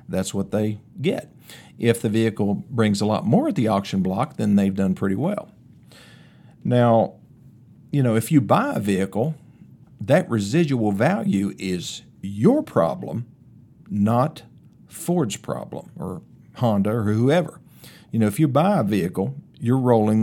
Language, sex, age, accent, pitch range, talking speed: English, male, 50-69, American, 105-150 Hz, 150 wpm